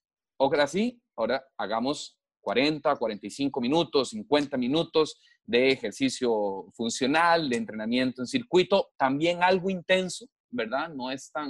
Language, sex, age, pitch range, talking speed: Spanish, male, 30-49, 130-190 Hz, 120 wpm